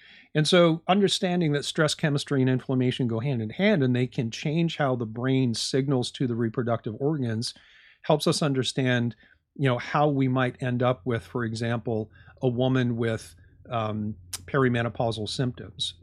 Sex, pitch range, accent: male, 115-140 Hz, American